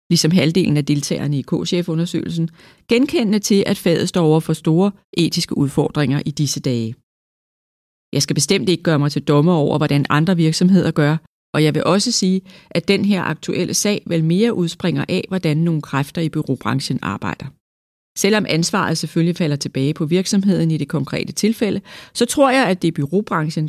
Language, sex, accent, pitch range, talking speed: Danish, female, native, 145-190 Hz, 180 wpm